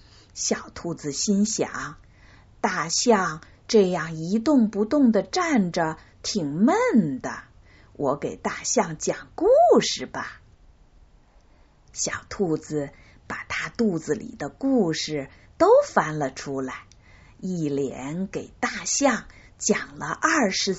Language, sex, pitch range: Chinese, female, 150-240 Hz